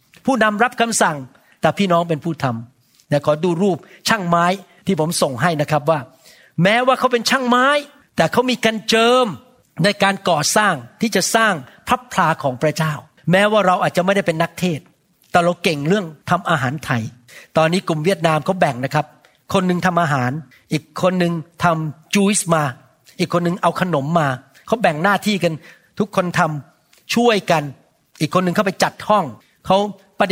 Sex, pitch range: male, 150-195 Hz